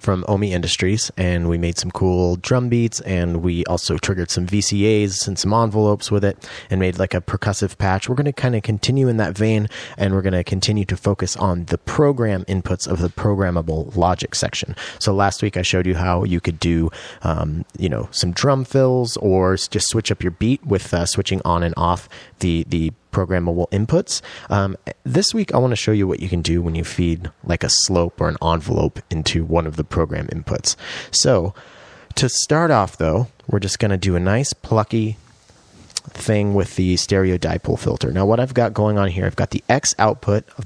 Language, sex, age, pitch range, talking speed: English, male, 30-49, 90-110 Hz, 210 wpm